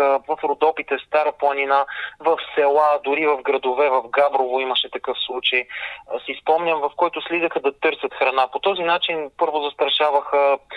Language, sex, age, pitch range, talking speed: Bulgarian, male, 20-39, 135-170 Hz, 155 wpm